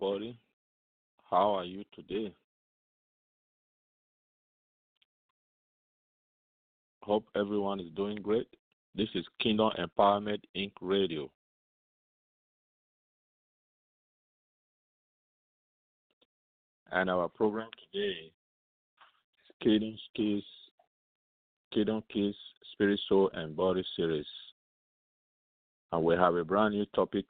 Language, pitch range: English, 85-110 Hz